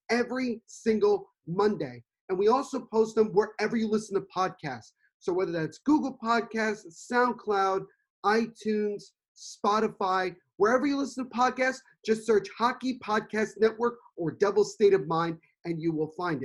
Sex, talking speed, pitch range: male, 145 wpm, 175-225 Hz